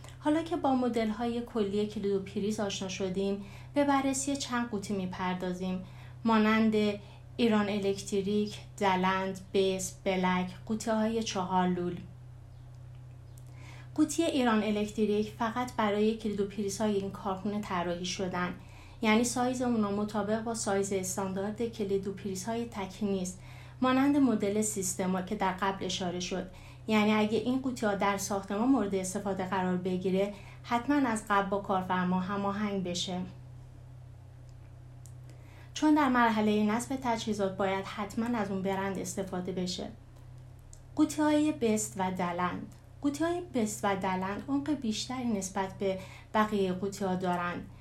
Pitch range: 185-225 Hz